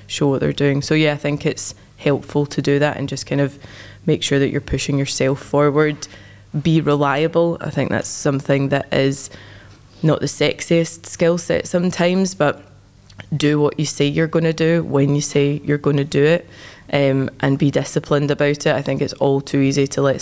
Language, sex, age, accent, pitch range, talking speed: English, female, 20-39, British, 135-150 Hz, 205 wpm